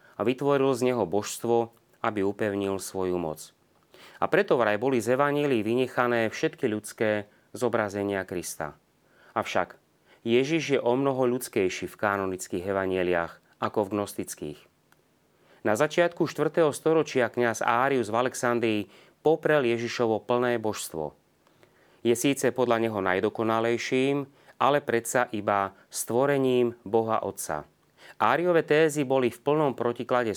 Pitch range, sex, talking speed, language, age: 100-130 Hz, male, 120 wpm, Slovak, 30-49